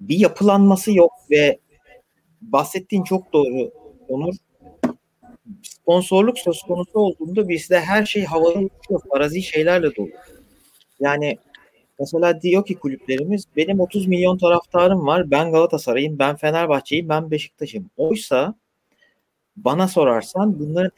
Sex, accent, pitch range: male, native, 145-180 Hz